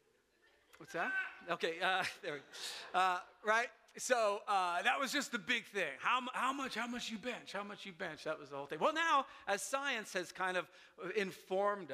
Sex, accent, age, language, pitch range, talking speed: male, American, 40-59, English, 170-230 Hz, 205 wpm